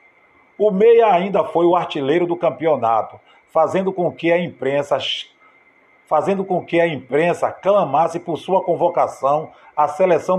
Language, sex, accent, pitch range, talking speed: Portuguese, male, Brazilian, 150-190 Hz, 140 wpm